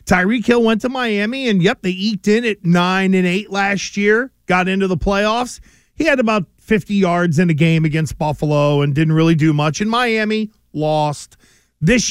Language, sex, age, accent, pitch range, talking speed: English, male, 40-59, American, 175-210 Hz, 195 wpm